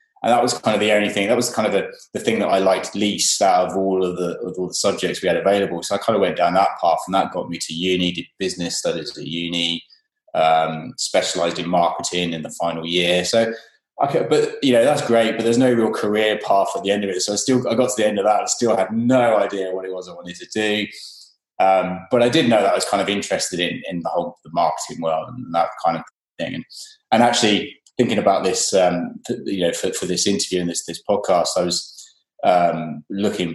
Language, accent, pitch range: English, British, 85-110 Hz